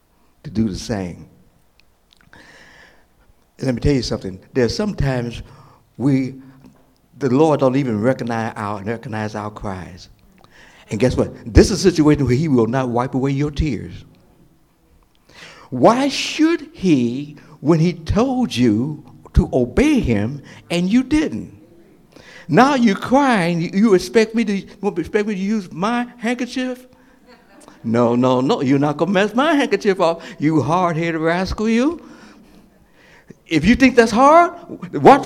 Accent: American